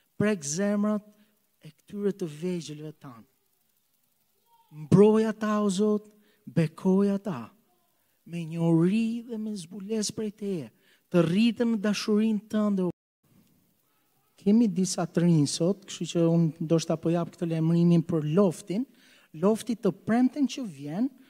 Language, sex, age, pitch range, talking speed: English, male, 40-59, 165-215 Hz, 125 wpm